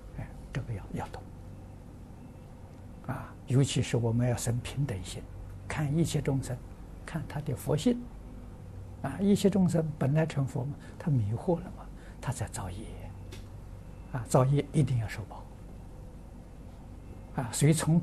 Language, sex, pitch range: Chinese, male, 100-135 Hz